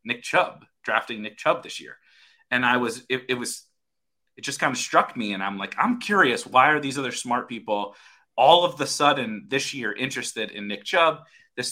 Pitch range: 110-150 Hz